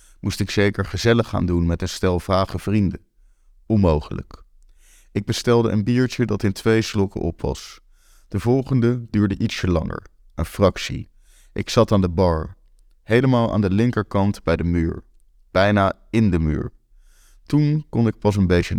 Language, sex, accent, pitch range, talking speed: Dutch, male, Dutch, 95-115 Hz, 165 wpm